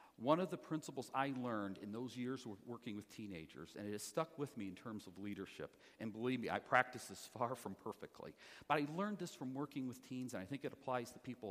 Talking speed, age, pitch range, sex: 245 wpm, 50-69, 110-145 Hz, male